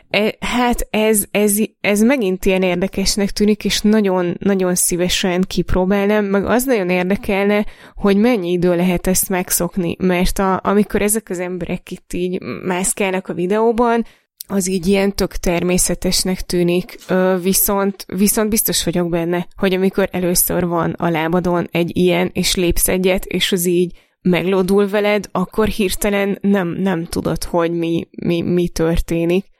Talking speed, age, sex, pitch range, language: 140 wpm, 20-39, female, 175-195 Hz, Hungarian